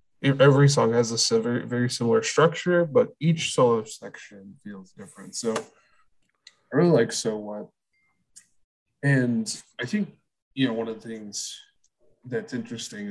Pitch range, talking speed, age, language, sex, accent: 100-125 Hz, 135 wpm, 20-39, English, male, American